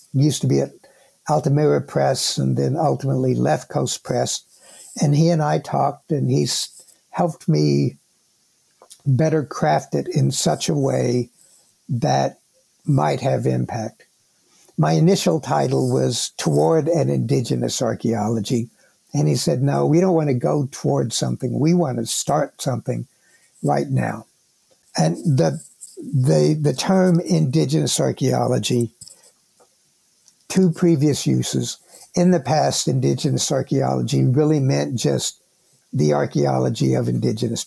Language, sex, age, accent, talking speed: English, male, 60-79, American, 125 wpm